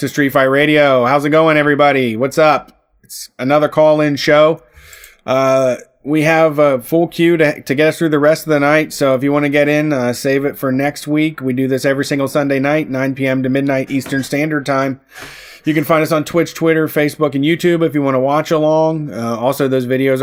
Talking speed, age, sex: 230 wpm, 30-49, male